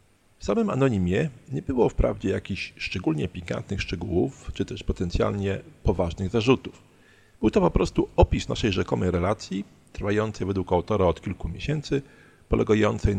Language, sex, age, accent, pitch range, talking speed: Polish, male, 40-59, native, 90-115 Hz, 135 wpm